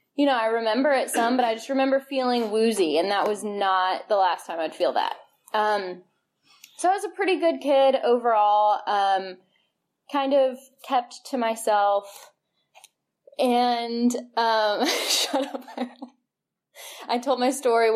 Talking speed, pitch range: 150 wpm, 210-280 Hz